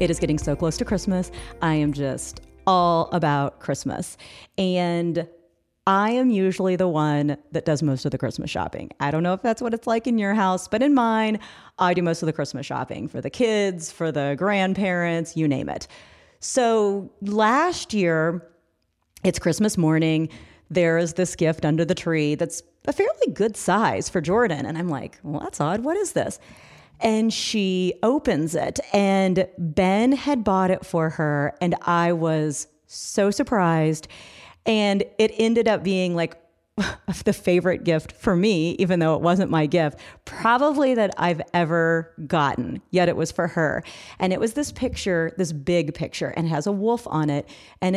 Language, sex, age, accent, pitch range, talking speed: English, female, 40-59, American, 155-200 Hz, 180 wpm